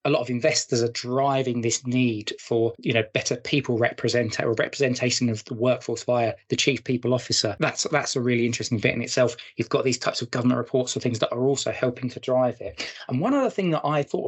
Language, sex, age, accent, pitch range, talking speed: English, male, 20-39, British, 120-135 Hz, 230 wpm